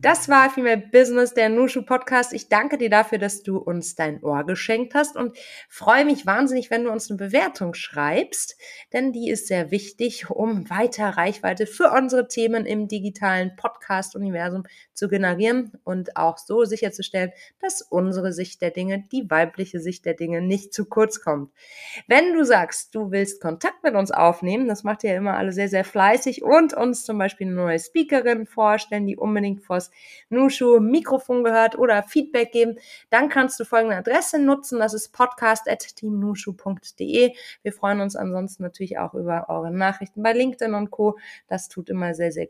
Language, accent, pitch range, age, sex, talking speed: German, German, 190-250 Hz, 30-49, female, 175 wpm